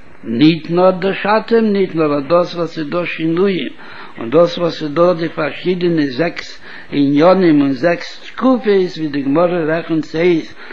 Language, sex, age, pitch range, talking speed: Hebrew, male, 60-79, 155-185 Hz, 105 wpm